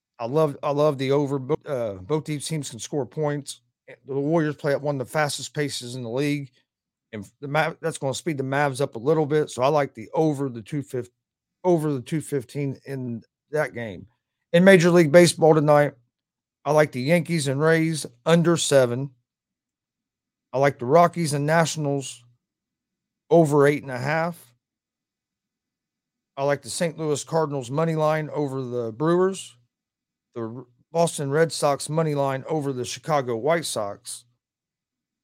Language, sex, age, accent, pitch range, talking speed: English, male, 40-59, American, 130-160 Hz, 165 wpm